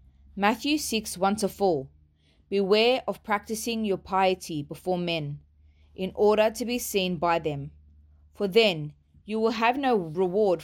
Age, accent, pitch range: 20-39, Australian, 155-210 Hz